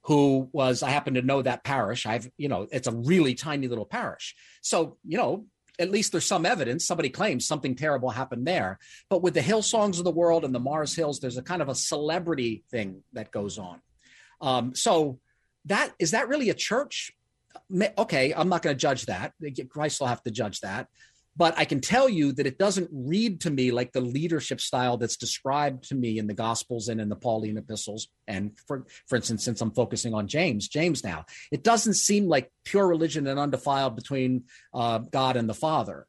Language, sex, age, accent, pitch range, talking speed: English, male, 40-59, American, 120-165 Hz, 210 wpm